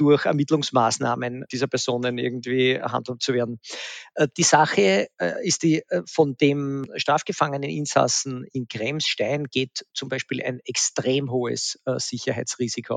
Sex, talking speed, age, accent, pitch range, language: male, 135 wpm, 50-69, Austrian, 130-150 Hz, German